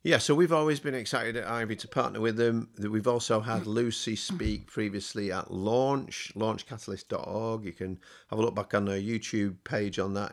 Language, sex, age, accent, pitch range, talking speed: English, male, 40-59, British, 95-110 Hz, 200 wpm